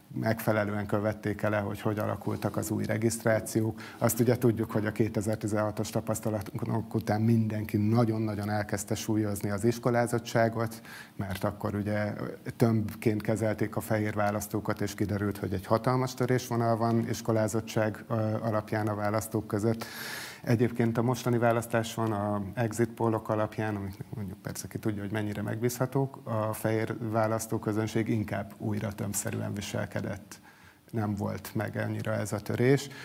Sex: male